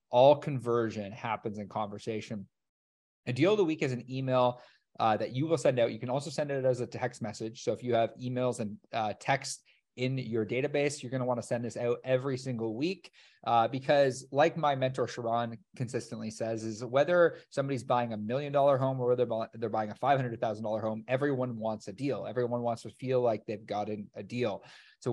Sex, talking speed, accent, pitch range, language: male, 210 wpm, American, 115-135 Hz, English